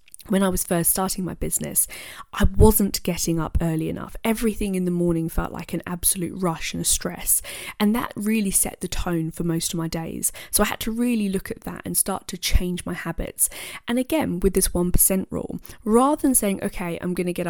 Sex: female